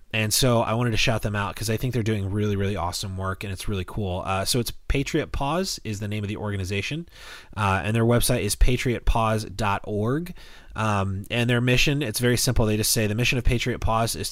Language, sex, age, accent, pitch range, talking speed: English, male, 30-49, American, 95-120 Hz, 220 wpm